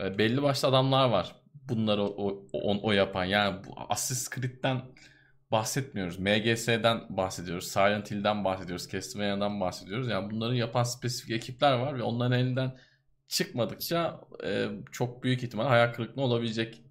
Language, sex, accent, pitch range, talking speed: Turkish, male, native, 105-140 Hz, 135 wpm